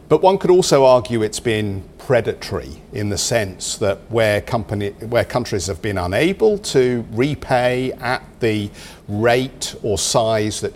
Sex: male